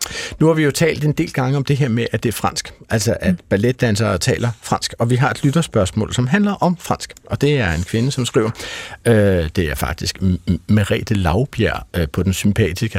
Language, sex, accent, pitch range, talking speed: Danish, male, native, 95-135 Hz, 230 wpm